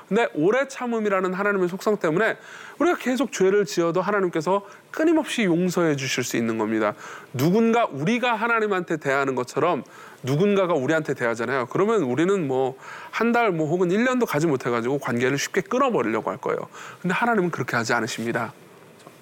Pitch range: 140-230 Hz